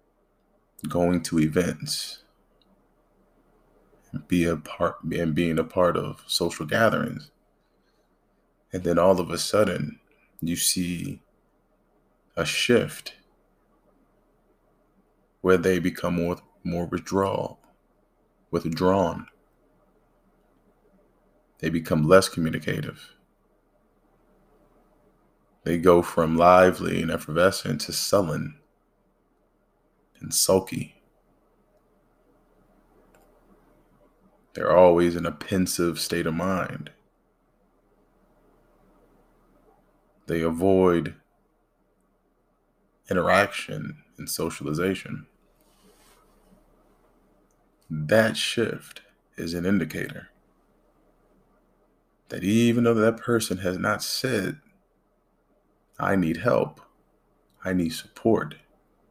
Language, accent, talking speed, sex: English, American, 75 wpm, male